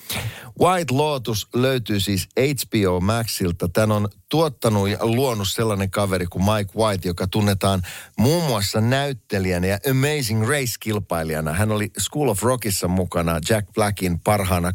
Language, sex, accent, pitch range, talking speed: Finnish, male, native, 90-120 Hz, 140 wpm